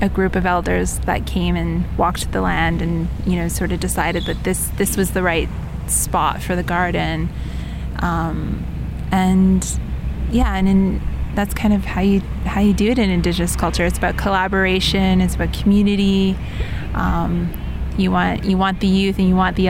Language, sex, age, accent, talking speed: English, female, 20-39, American, 185 wpm